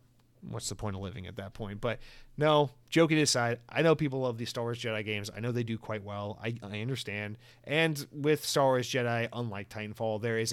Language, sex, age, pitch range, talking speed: English, male, 30-49, 110-130 Hz, 220 wpm